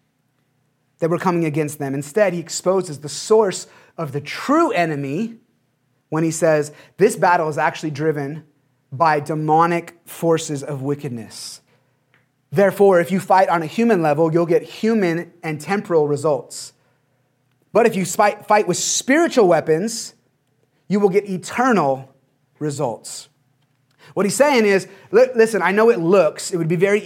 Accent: American